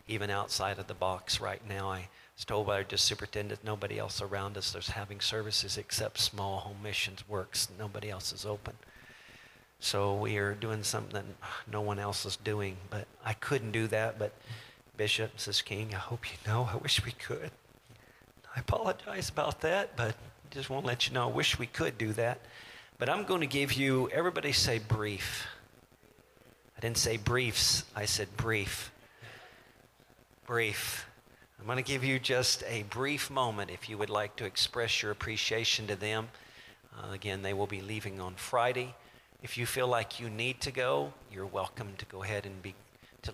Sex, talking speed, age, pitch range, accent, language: male, 185 wpm, 50-69, 105-130 Hz, American, English